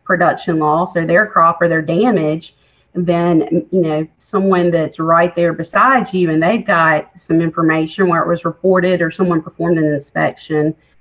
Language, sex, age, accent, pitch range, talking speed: English, female, 30-49, American, 165-190 Hz, 170 wpm